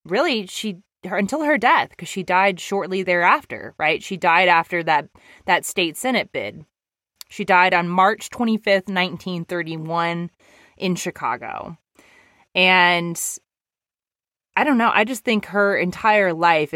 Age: 20-39